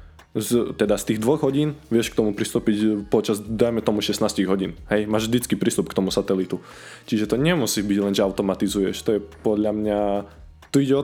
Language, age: Slovak, 20-39